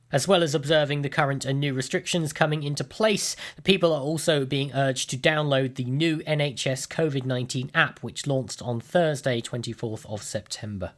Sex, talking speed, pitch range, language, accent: male, 170 wpm, 135-180 Hz, English, British